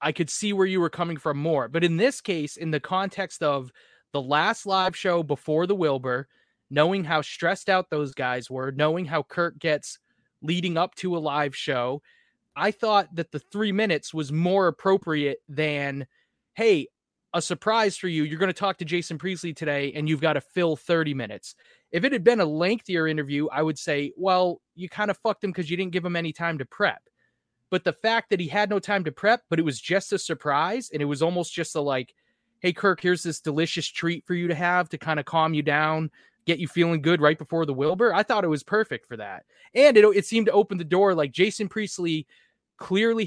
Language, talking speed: English, 225 wpm